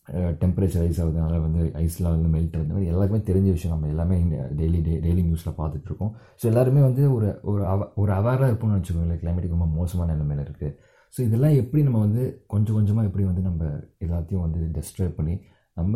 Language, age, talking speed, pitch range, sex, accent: Tamil, 30-49, 175 wpm, 80-100 Hz, male, native